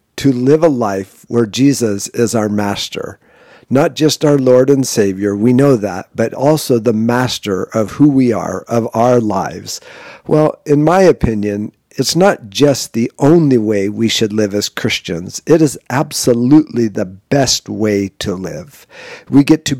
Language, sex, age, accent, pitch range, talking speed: English, male, 50-69, American, 115-145 Hz, 165 wpm